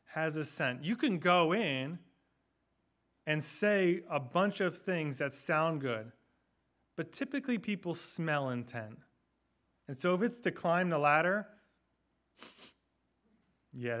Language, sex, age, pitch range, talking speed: English, male, 30-49, 135-190 Hz, 130 wpm